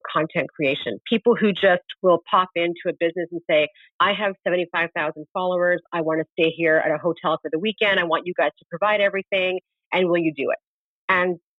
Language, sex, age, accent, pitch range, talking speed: English, female, 40-59, American, 160-200 Hz, 205 wpm